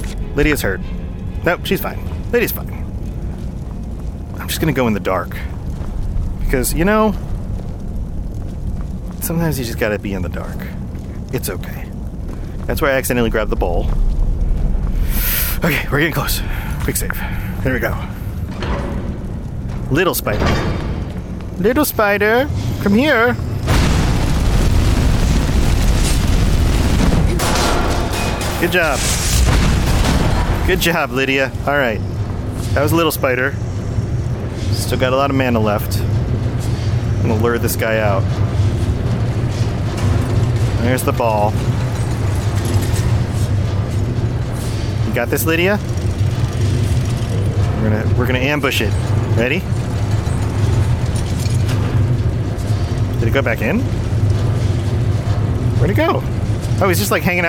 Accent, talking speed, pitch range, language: American, 105 wpm, 100-115 Hz, English